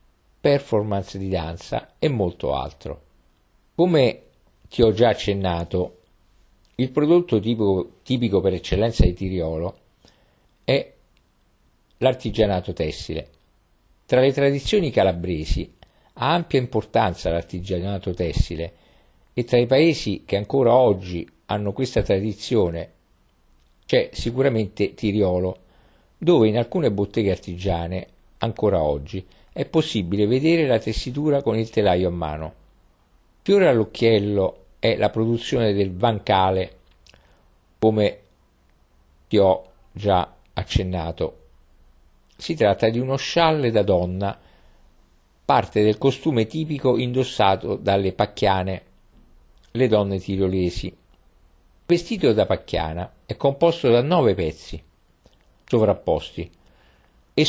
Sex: male